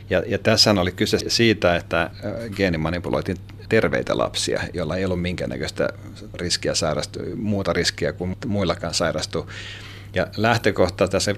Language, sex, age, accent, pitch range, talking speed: Finnish, male, 40-59, native, 90-105 Hz, 110 wpm